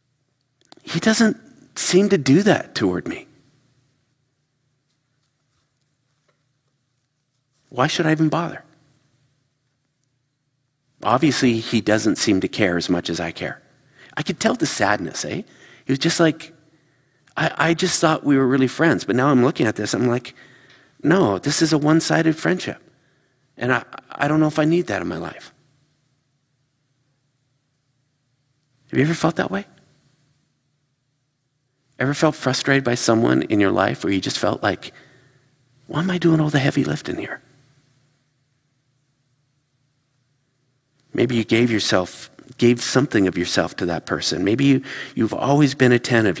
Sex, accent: male, American